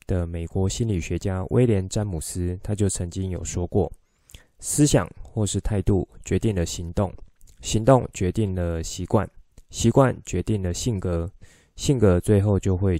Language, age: Chinese, 20-39